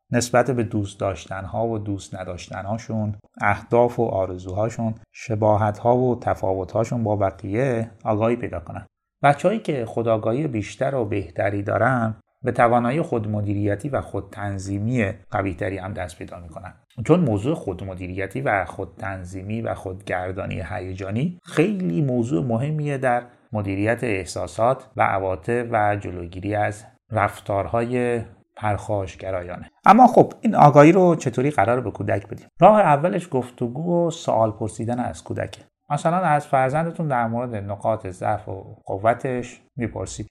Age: 30-49